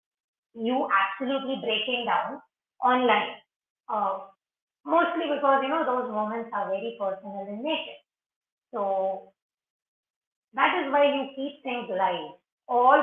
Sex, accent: female, Indian